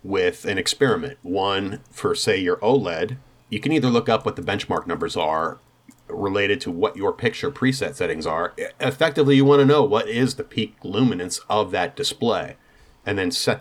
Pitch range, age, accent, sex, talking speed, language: 115-170 Hz, 30-49, American, male, 185 wpm, English